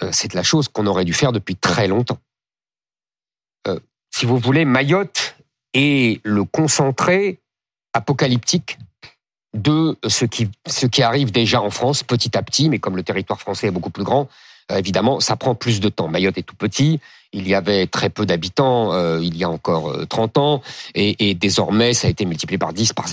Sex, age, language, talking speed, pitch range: male, 50-69, French, 190 wpm, 105-145 Hz